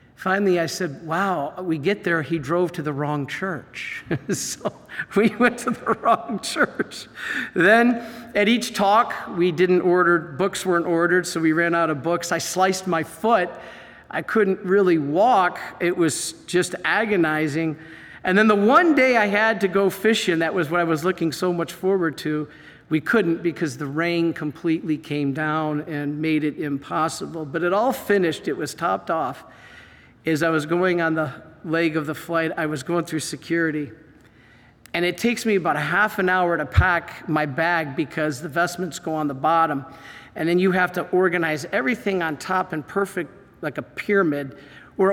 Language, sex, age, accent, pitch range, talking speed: English, male, 50-69, American, 155-190 Hz, 185 wpm